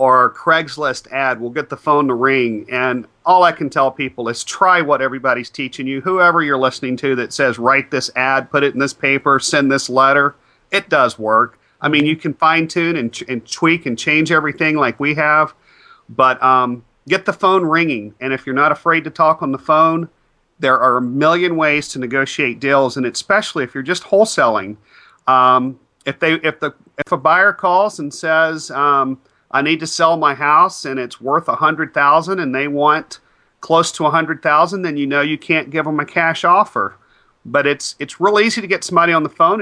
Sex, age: male, 40-59